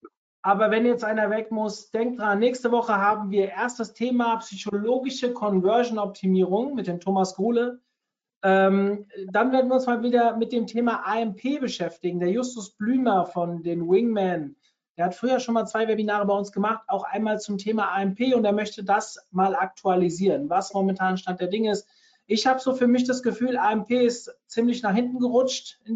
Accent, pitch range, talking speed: German, 190-235 Hz, 185 wpm